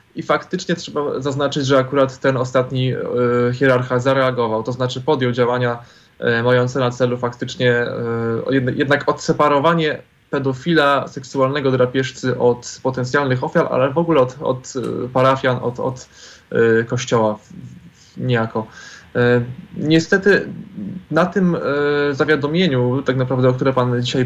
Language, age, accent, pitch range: Polish, 20-39, native, 125-145 Hz